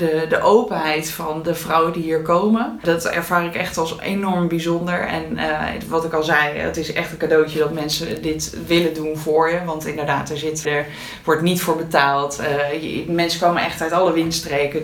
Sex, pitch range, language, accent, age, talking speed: female, 155-180 Hz, Dutch, Dutch, 20-39, 205 wpm